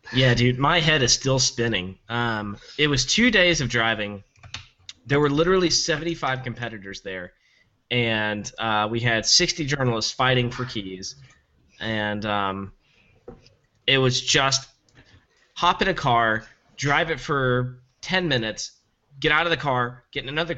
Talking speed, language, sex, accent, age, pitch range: 150 wpm, English, male, American, 20-39, 110-135 Hz